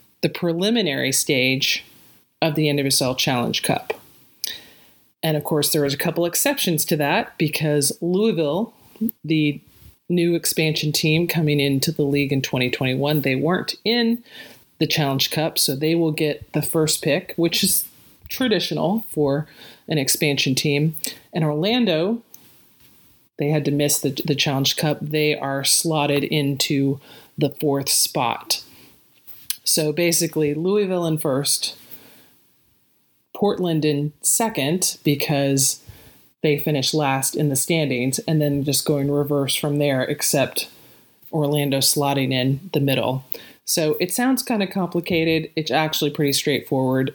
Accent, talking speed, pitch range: American, 135 wpm, 140-170 Hz